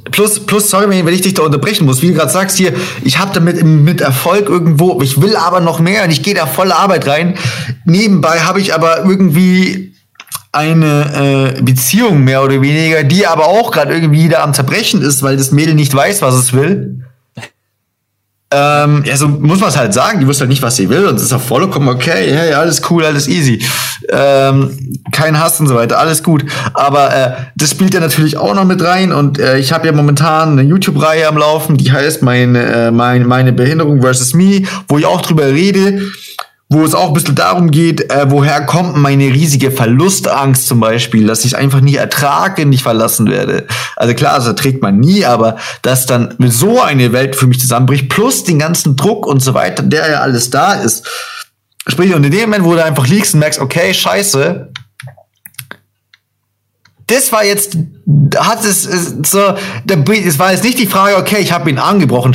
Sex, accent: male, German